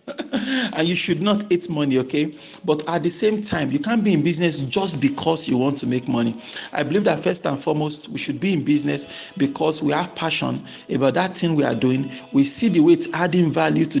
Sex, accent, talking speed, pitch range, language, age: male, Nigerian, 225 wpm, 140-185 Hz, English, 50-69